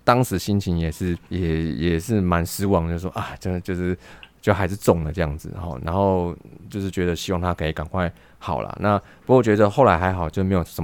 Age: 20-39